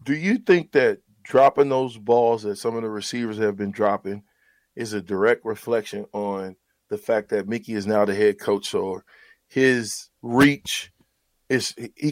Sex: male